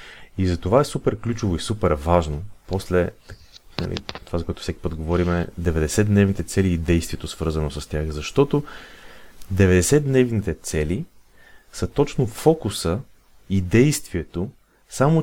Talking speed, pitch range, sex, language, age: 135 wpm, 90-120 Hz, male, Bulgarian, 30-49